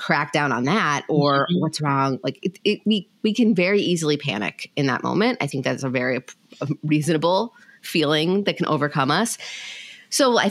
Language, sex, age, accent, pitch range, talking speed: English, female, 30-49, American, 145-185 Hz, 170 wpm